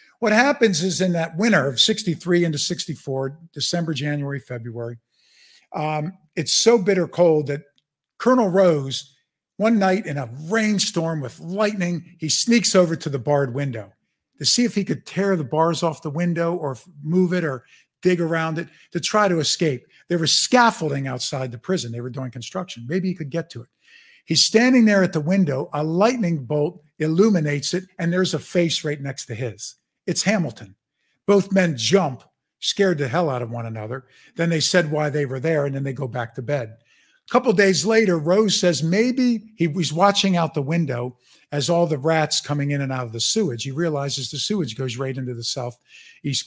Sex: male